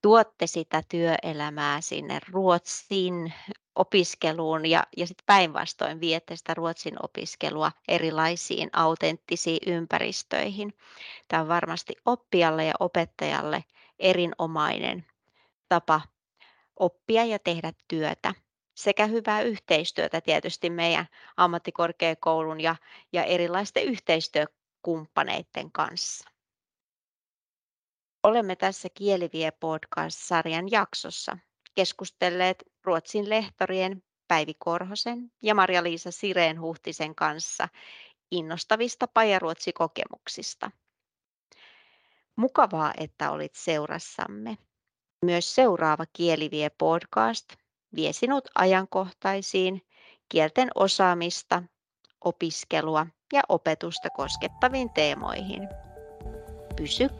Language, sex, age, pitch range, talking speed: Finnish, female, 30-49, 160-195 Hz, 75 wpm